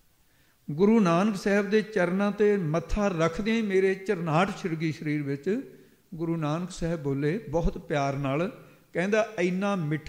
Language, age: English, 60-79